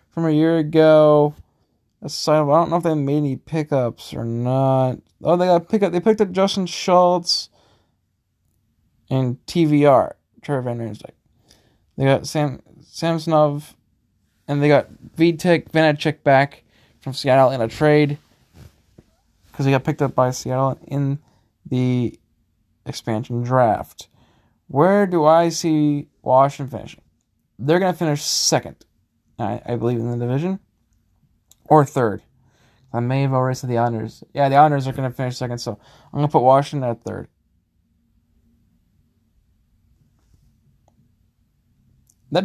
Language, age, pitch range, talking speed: English, 20-39, 115-160 Hz, 140 wpm